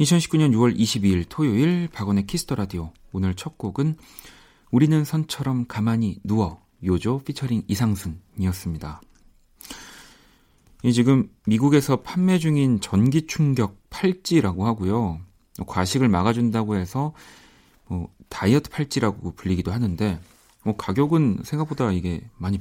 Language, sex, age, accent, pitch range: Korean, male, 40-59, native, 95-130 Hz